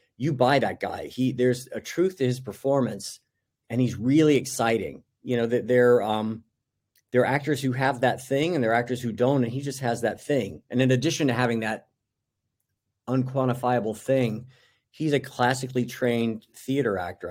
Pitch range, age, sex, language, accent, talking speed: 105-125 Hz, 50-69, male, English, American, 185 wpm